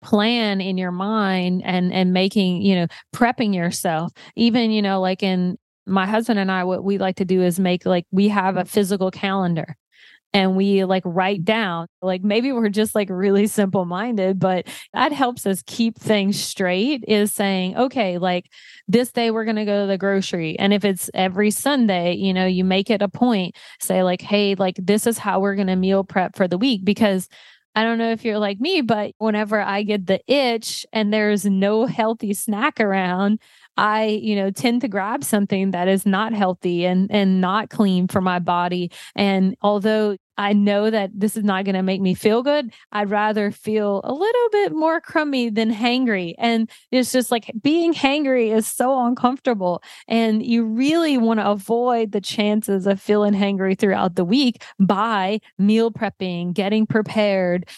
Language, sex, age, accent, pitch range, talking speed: English, female, 30-49, American, 190-220 Hz, 190 wpm